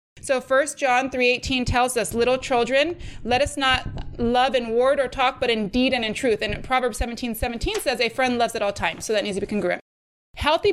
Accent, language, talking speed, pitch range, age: American, English, 225 wpm, 230-275 Hz, 20-39